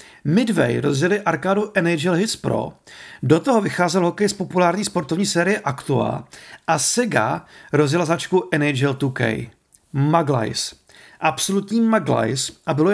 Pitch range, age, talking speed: 150-195 Hz, 40-59, 120 wpm